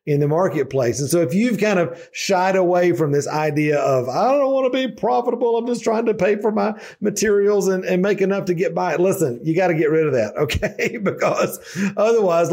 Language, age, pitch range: English, 40-59, 145-180 Hz